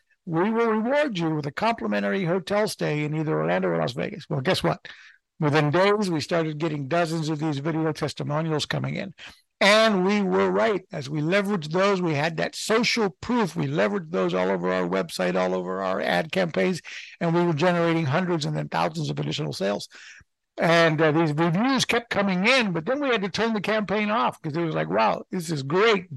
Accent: American